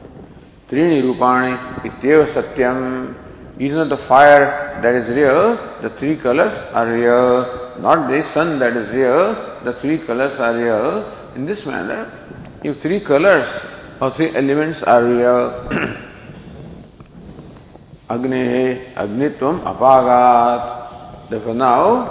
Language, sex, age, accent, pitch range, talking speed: English, male, 50-69, Indian, 120-155 Hz, 115 wpm